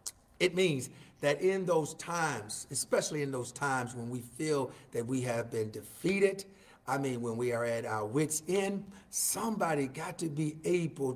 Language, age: English, 50-69